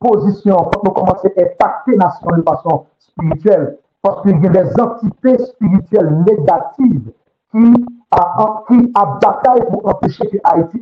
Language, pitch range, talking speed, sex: French, 170-230 Hz, 145 wpm, male